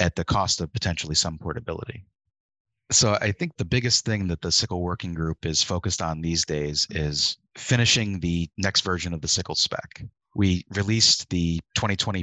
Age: 30-49